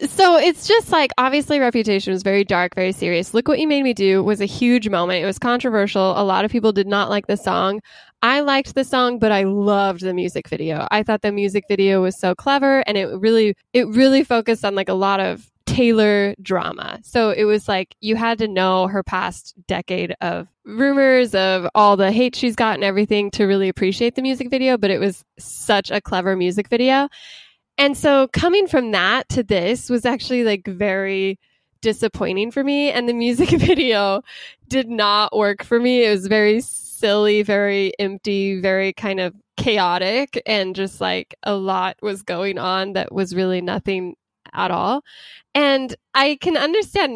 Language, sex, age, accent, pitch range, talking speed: English, female, 10-29, American, 190-245 Hz, 190 wpm